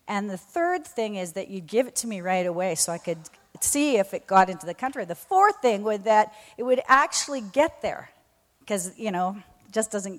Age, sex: 40-59, female